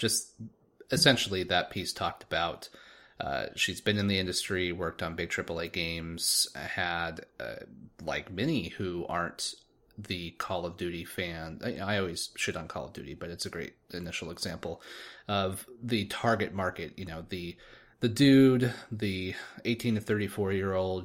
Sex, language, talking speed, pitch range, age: male, English, 170 wpm, 90-105 Hz, 30-49